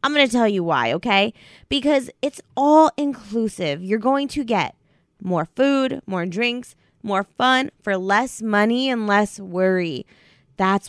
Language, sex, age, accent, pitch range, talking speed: English, female, 20-39, American, 195-270 Hz, 150 wpm